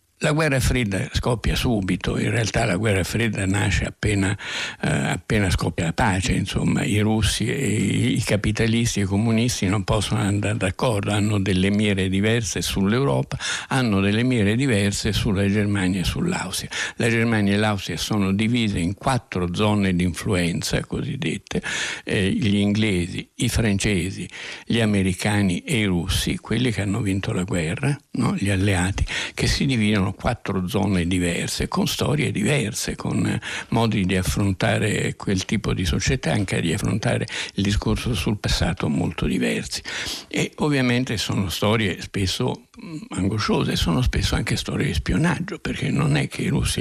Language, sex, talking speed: Italian, male, 150 wpm